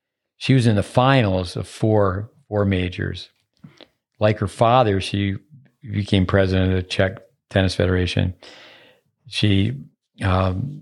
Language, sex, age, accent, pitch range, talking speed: English, male, 50-69, American, 95-115 Hz, 120 wpm